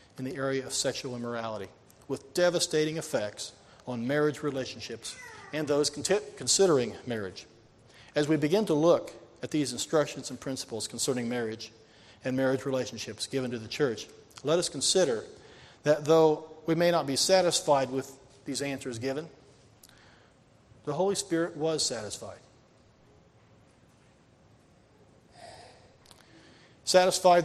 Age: 40-59